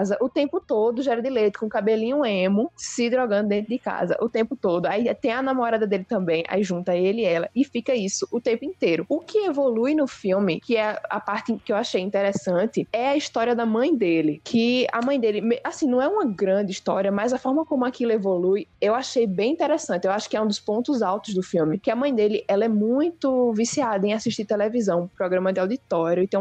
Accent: Brazilian